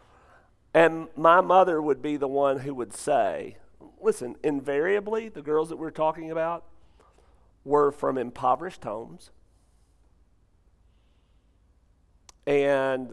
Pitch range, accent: 85-125 Hz, American